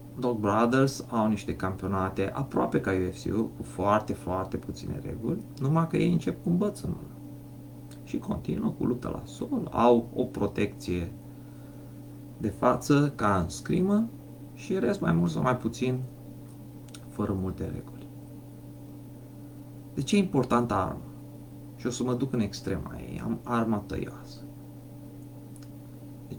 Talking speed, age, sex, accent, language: 140 wpm, 30-49, male, native, Romanian